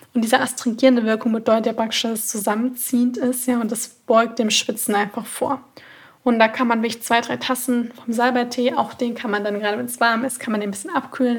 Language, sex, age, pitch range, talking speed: German, female, 20-39, 225-250 Hz, 230 wpm